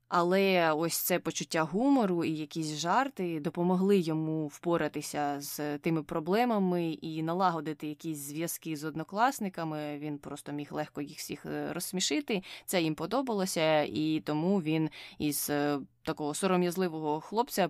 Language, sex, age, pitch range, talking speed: Ukrainian, female, 20-39, 155-185 Hz, 125 wpm